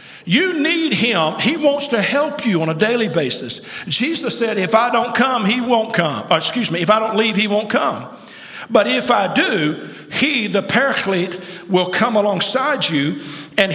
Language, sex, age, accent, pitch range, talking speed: English, male, 50-69, American, 185-270 Hz, 185 wpm